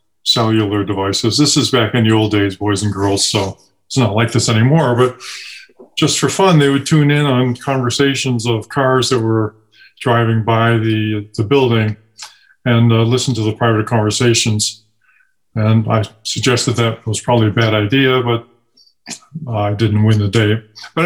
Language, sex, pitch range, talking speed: English, male, 115-130 Hz, 175 wpm